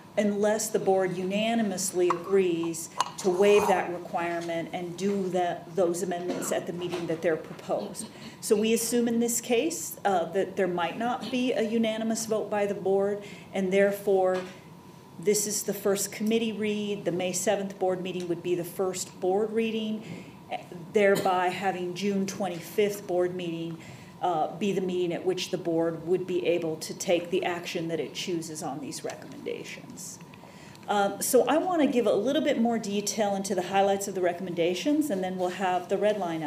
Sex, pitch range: female, 175-210 Hz